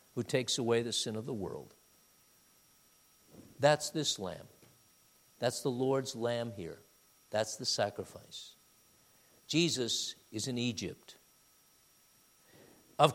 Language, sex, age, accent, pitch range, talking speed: English, male, 50-69, American, 135-220 Hz, 110 wpm